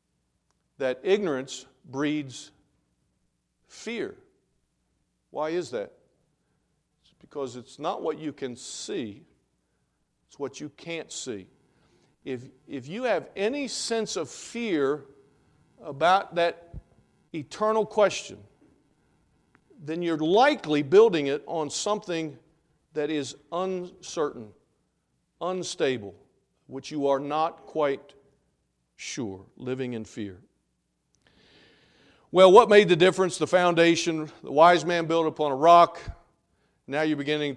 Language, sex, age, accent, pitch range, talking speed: English, male, 50-69, American, 140-185 Hz, 110 wpm